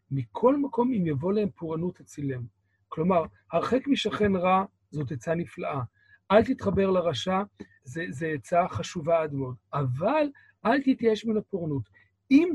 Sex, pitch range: male, 150-220 Hz